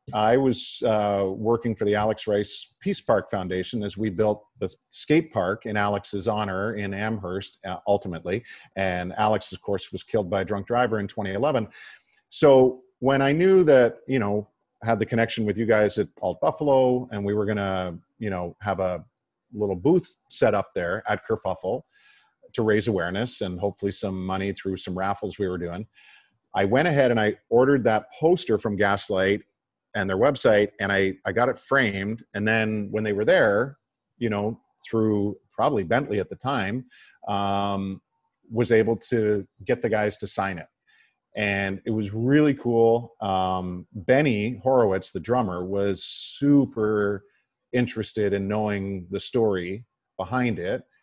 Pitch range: 95-115 Hz